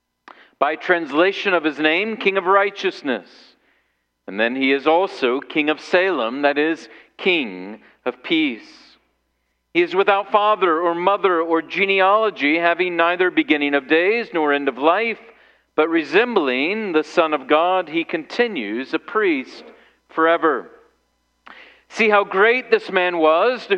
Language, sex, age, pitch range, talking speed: English, male, 50-69, 145-205 Hz, 140 wpm